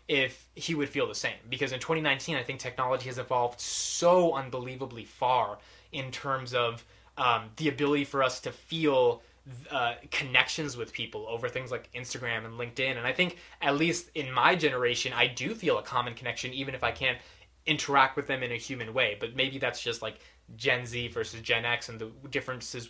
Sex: male